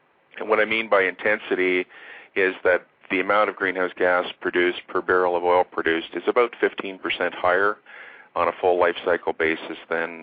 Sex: male